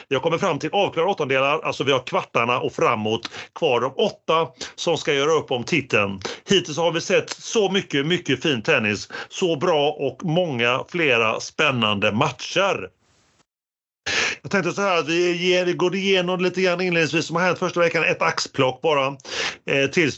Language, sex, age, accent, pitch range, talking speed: Swedish, male, 30-49, native, 125-175 Hz, 165 wpm